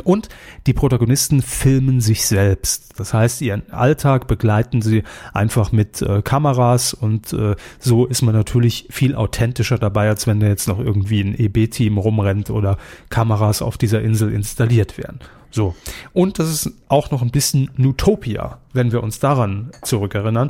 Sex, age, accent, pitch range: male, 30-49, German, 110-135 Hz